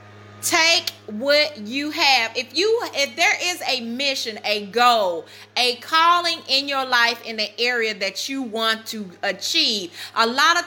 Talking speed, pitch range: 165 wpm, 245-350 Hz